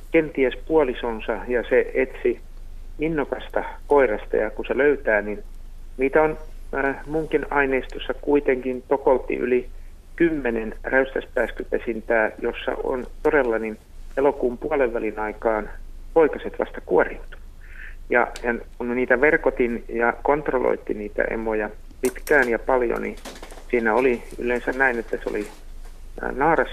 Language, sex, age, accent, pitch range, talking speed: Finnish, male, 50-69, native, 110-150 Hz, 120 wpm